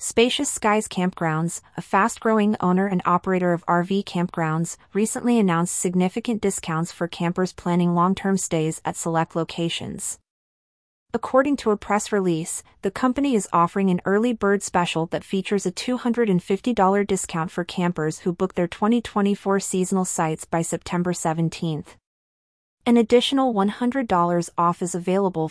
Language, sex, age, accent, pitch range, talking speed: English, female, 30-49, American, 170-200 Hz, 135 wpm